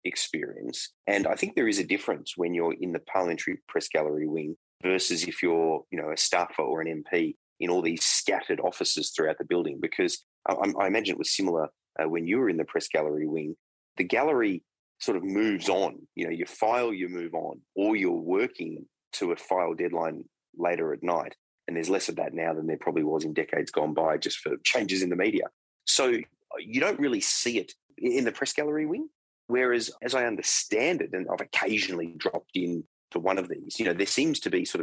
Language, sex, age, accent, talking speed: English, male, 30-49, Australian, 215 wpm